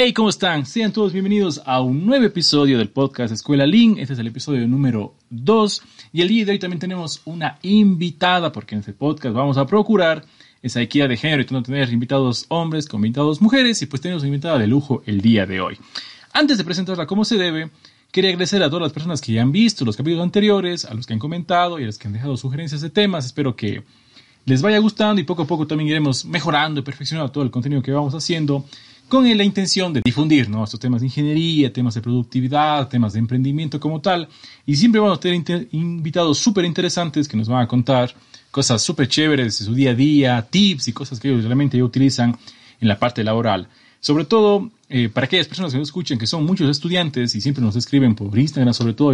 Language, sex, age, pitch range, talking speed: Spanish, male, 30-49, 125-175 Hz, 225 wpm